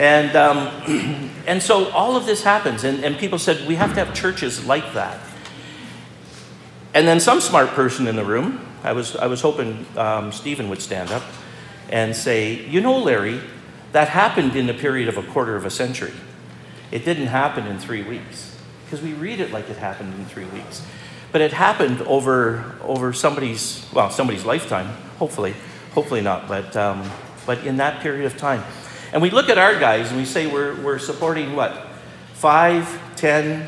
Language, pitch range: English, 110-155 Hz